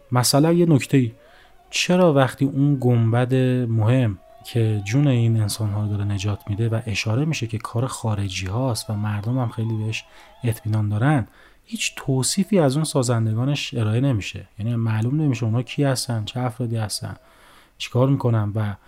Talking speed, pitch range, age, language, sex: 160 wpm, 110-135 Hz, 30-49, Persian, male